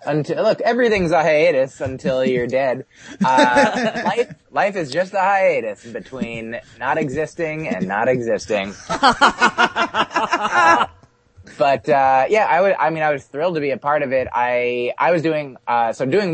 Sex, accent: male, American